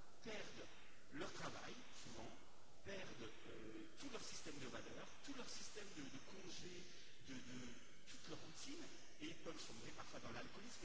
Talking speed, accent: 160 wpm, French